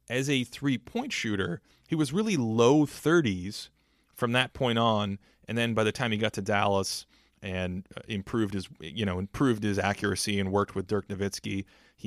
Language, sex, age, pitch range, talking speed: English, male, 30-49, 100-140 Hz, 185 wpm